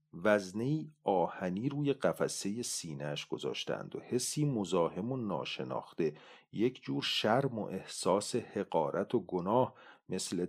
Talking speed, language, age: 115 wpm, Persian, 40-59